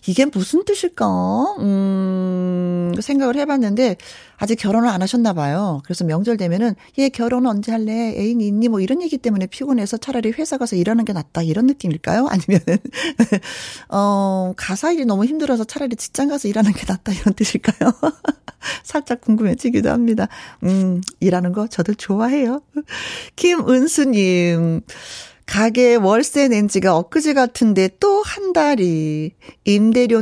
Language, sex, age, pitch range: Korean, female, 40-59, 190-275 Hz